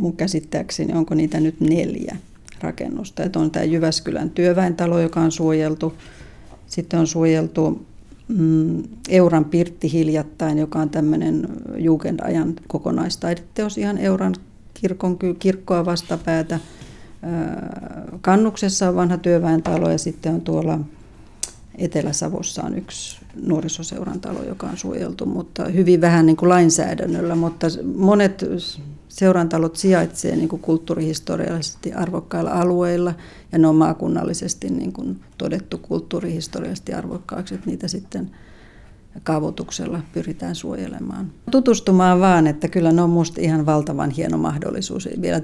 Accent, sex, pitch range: native, female, 155-175 Hz